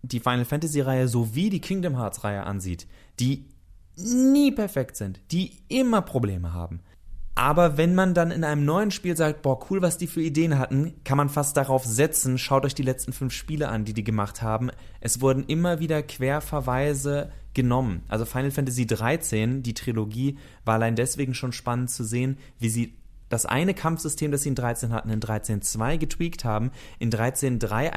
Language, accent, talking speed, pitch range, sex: German, German, 180 wpm, 110-150 Hz, male